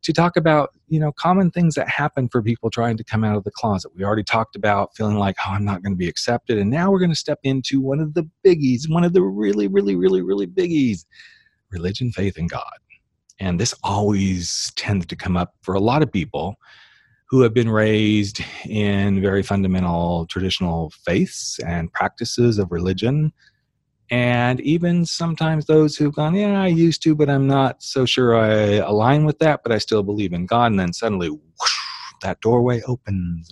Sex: male